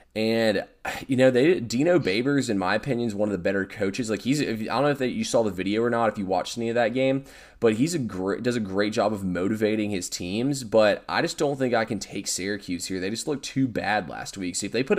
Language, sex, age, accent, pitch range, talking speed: English, male, 20-39, American, 95-120 Hz, 270 wpm